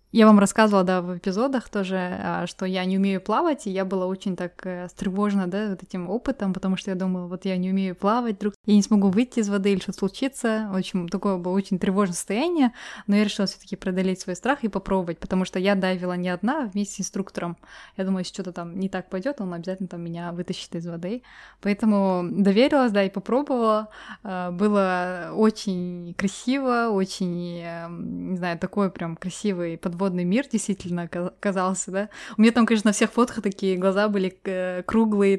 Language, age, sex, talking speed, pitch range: Russian, 20-39, female, 195 wpm, 185-220 Hz